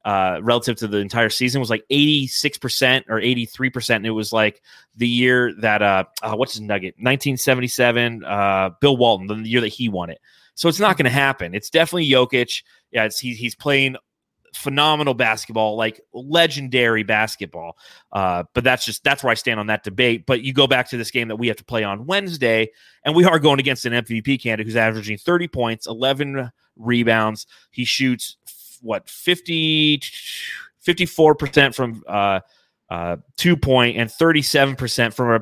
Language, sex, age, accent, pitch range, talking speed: English, male, 30-49, American, 110-140 Hz, 190 wpm